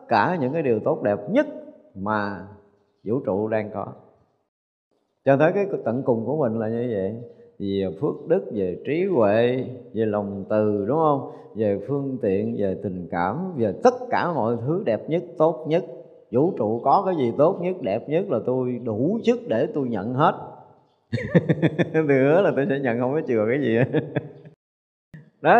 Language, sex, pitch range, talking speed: Vietnamese, male, 115-175 Hz, 180 wpm